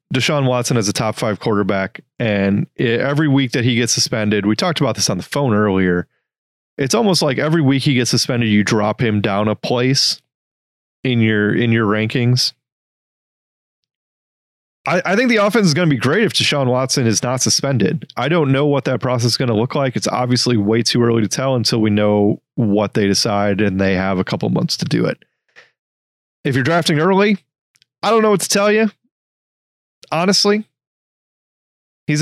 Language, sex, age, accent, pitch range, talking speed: English, male, 30-49, American, 105-140 Hz, 190 wpm